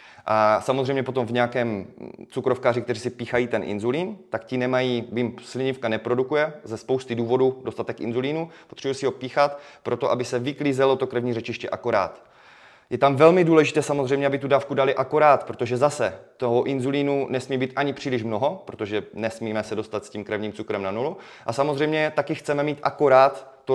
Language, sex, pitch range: Czech, male, 115-140 Hz